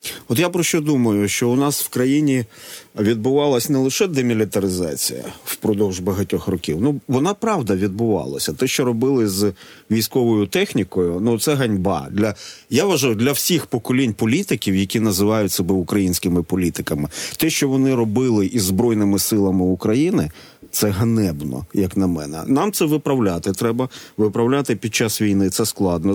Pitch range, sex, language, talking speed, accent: 100-130 Hz, male, Ukrainian, 150 wpm, native